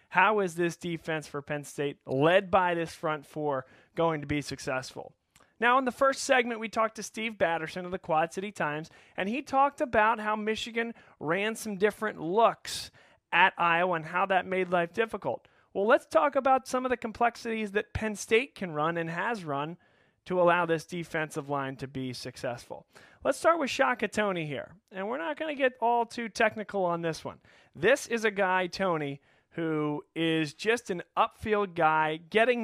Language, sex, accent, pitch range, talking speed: English, male, American, 155-210 Hz, 190 wpm